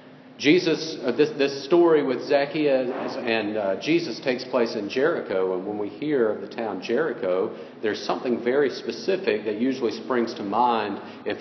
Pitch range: 105-125 Hz